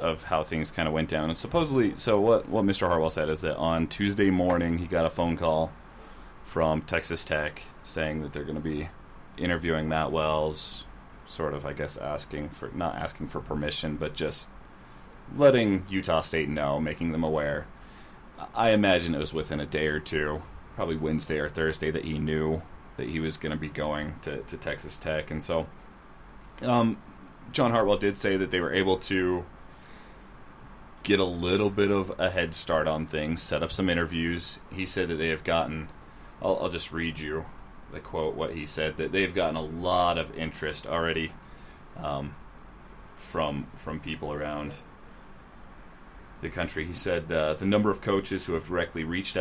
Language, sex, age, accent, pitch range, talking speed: English, male, 30-49, American, 75-95 Hz, 185 wpm